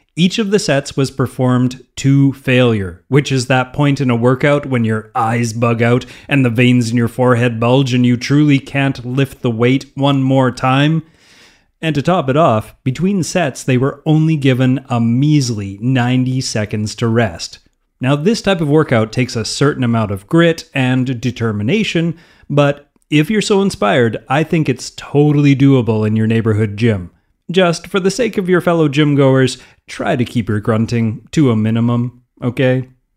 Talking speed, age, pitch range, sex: 175 wpm, 30-49, 120-155 Hz, male